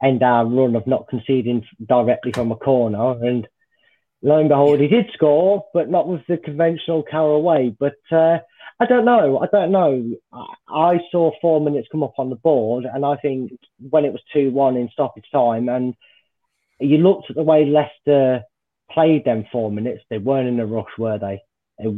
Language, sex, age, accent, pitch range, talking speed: English, male, 30-49, British, 120-150 Hz, 190 wpm